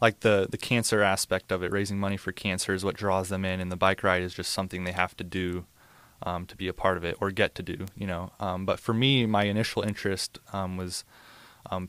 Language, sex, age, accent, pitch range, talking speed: English, male, 20-39, American, 95-105 Hz, 250 wpm